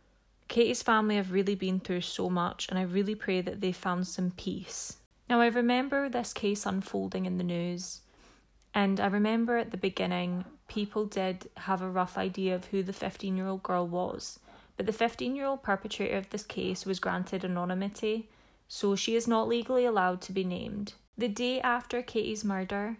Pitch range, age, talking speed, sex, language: 190-225 Hz, 20-39, 175 wpm, female, English